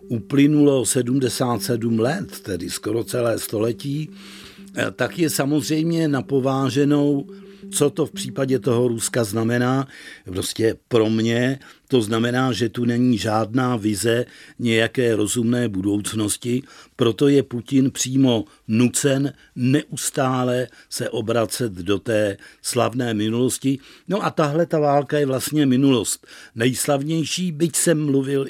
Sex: male